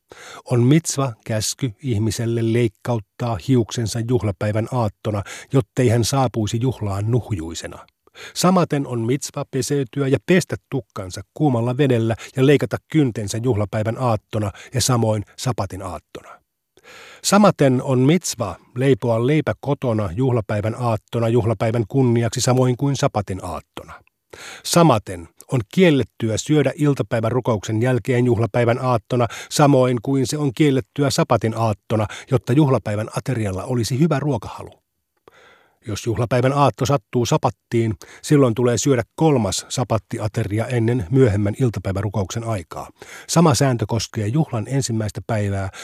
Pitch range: 110-135 Hz